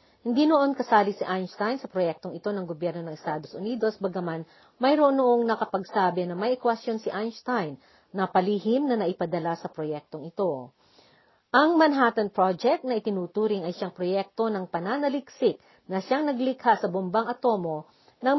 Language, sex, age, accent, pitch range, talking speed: Filipino, female, 50-69, native, 185-240 Hz, 150 wpm